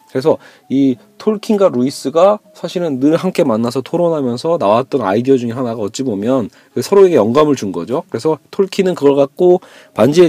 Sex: male